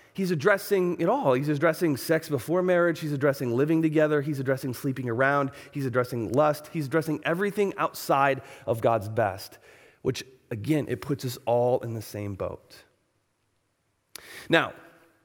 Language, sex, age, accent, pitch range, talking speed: English, male, 30-49, American, 130-190 Hz, 150 wpm